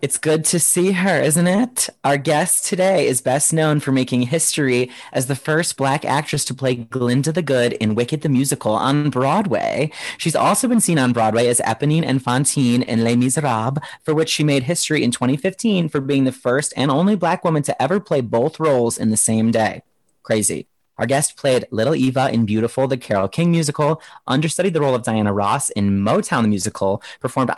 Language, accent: English, American